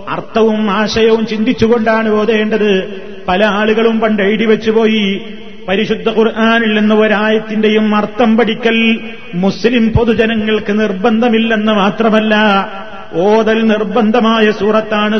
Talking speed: 85 wpm